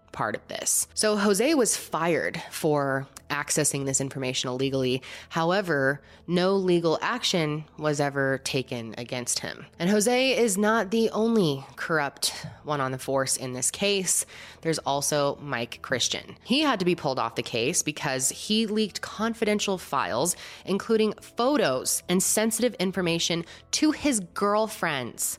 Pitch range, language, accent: 135-210 Hz, English, American